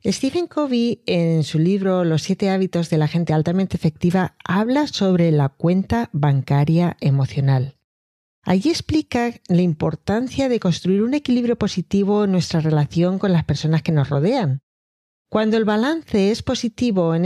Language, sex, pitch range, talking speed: Spanish, female, 155-225 Hz, 150 wpm